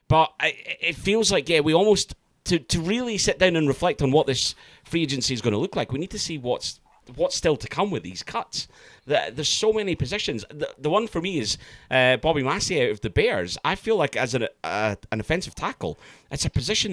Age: 30-49